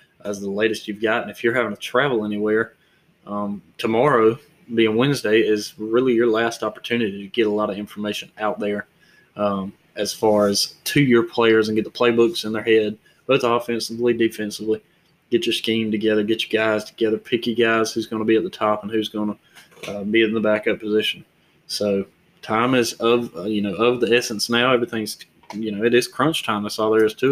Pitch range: 105-120 Hz